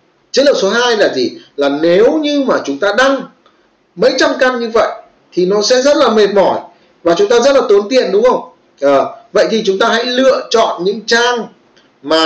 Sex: male